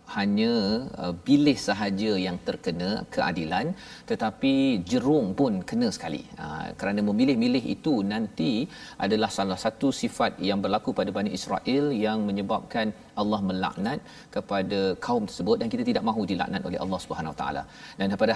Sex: male